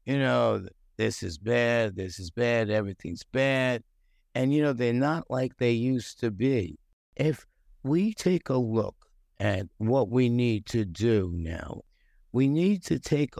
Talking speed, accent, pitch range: 160 wpm, American, 105-135 Hz